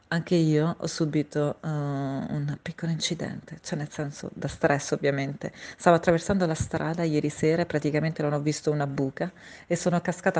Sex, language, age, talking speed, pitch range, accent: female, Italian, 30-49, 175 wpm, 150-175 Hz, native